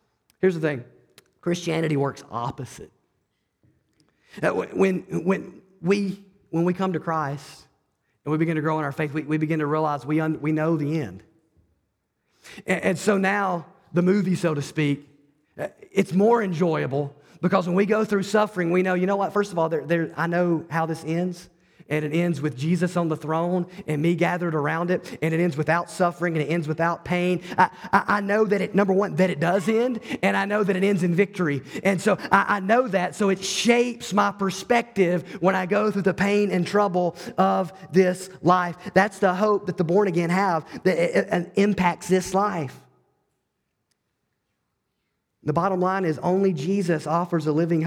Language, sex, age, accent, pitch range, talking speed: English, male, 40-59, American, 160-195 Hz, 190 wpm